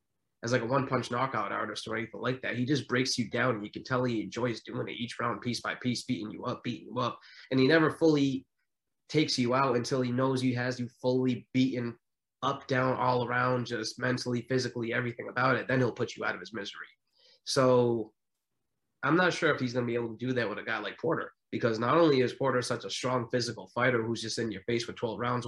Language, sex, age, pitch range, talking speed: English, male, 20-39, 120-130 Hz, 245 wpm